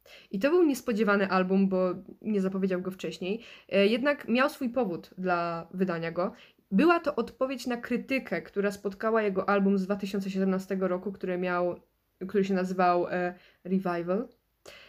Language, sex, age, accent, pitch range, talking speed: Polish, female, 20-39, native, 190-230 Hz, 140 wpm